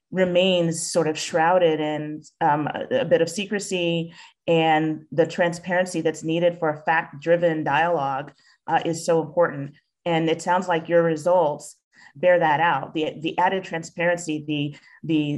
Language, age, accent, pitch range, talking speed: English, 30-49, American, 160-175 Hz, 150 wpm